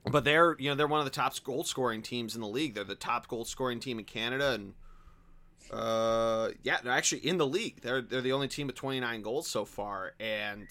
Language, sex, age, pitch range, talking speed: English, male, 30-49, 115-140 Hz, 235 wpm